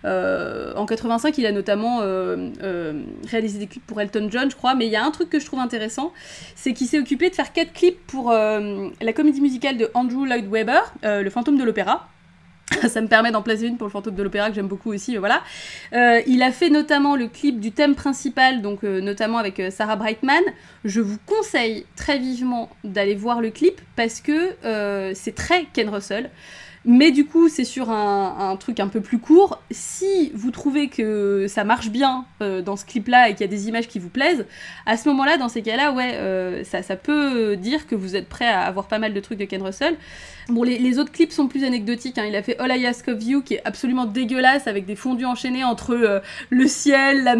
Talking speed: 235 wpm